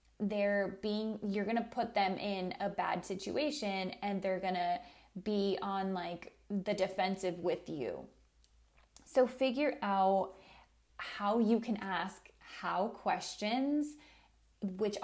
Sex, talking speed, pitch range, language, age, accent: female, 130 wpm, 195-240 Hz, English, 20-39, American